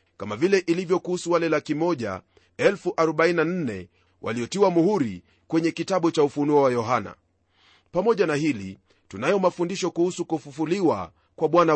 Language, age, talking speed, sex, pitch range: Swahili, 40-59, 120 wpm, male, 140-175 Hz